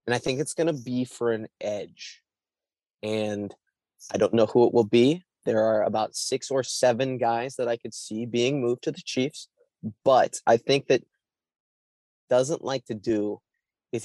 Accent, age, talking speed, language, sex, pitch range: American, 20-39, 185 wpm, English, male, 110-135 Hz